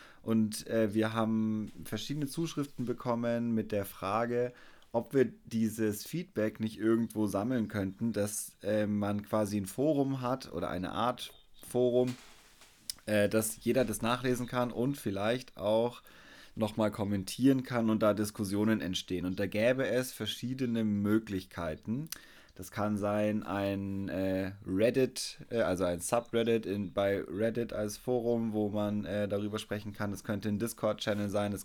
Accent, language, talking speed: German, German, 140 wpm